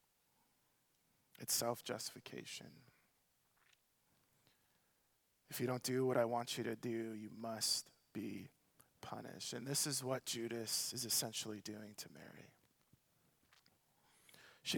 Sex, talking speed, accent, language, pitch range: male, 110 wpm, American, English, 125-160 Hz